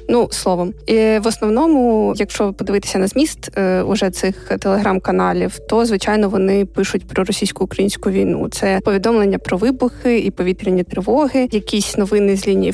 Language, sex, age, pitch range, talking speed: Ukrainian, female, 20-39, 190-225 Hz, 145 wpm